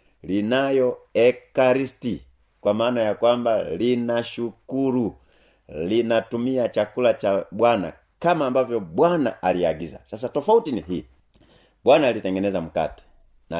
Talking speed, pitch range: 100 wpm, 100-130 Hz